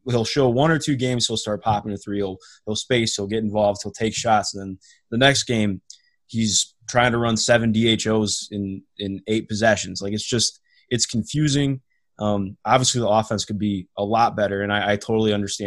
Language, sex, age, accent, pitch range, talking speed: English, male, 20-39, American, 100-120 Hz, 205 wpm